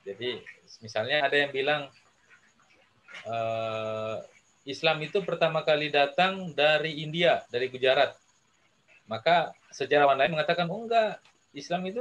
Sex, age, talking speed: male, 30-49, 110 wpm